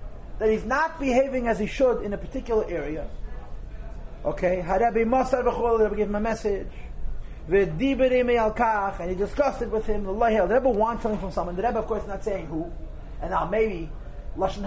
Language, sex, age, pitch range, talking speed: English, male, 30-49, 185-255 Hz, 185 wpm